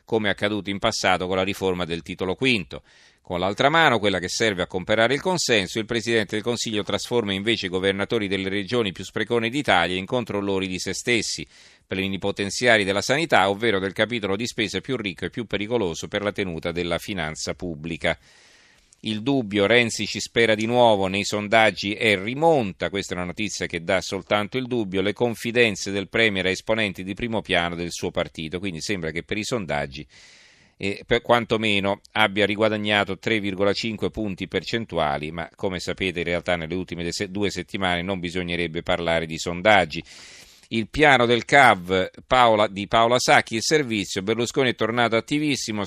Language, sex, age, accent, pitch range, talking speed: Italian, male, 40-59, native, 90-115 Hz, 175 wpm